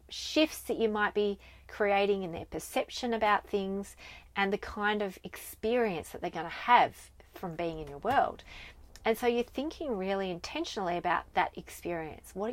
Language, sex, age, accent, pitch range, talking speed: English, female, 30-49, Australian, 175-220 Hz, 170 wpm